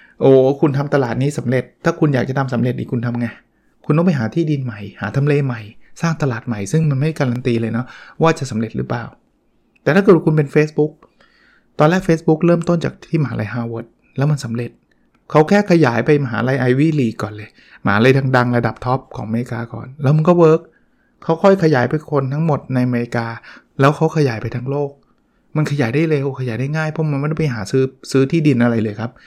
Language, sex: English, male